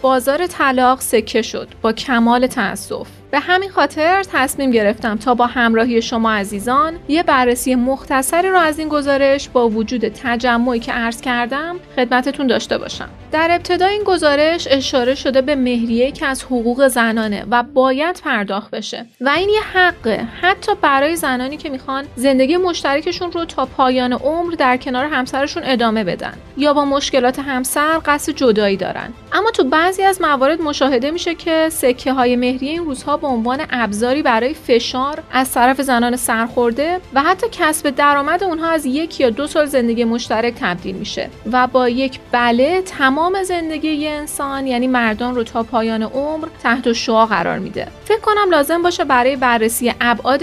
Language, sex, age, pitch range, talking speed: Persian, female, 30-49, 240-310 Hz, 165 wpm